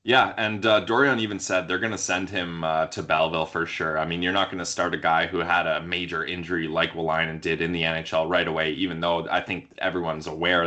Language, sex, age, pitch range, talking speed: English, male, 20-39, 85-105 Hz, 250 wpm